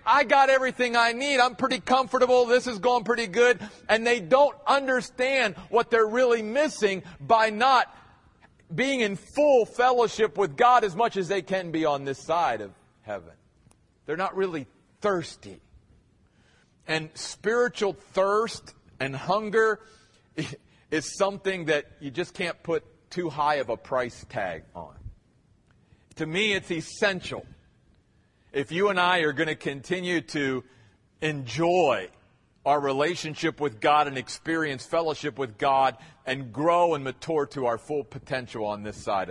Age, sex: 40-59, male